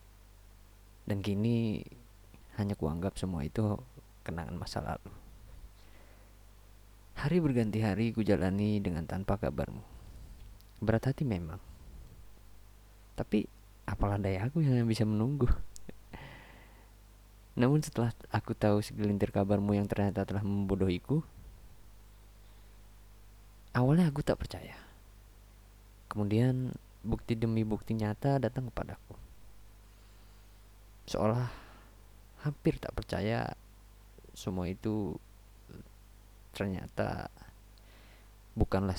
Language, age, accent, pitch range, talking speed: Indonesian, 20-39, native, 100-110 Hz, 85 wpm